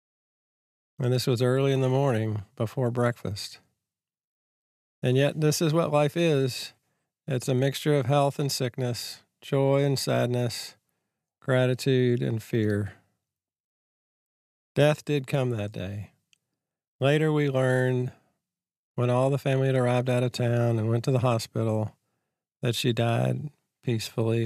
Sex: male